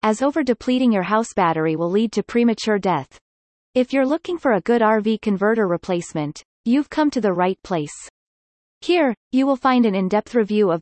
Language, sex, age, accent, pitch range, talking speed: English, female, 30-49, American, 185-245 Hz, 195 wpm